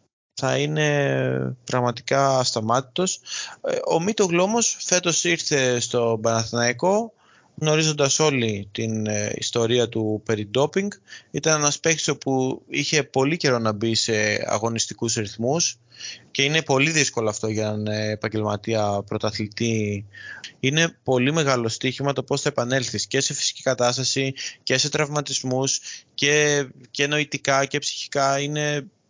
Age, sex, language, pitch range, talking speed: 20-39, male, Greek, 115-150 Hz, 120 wpm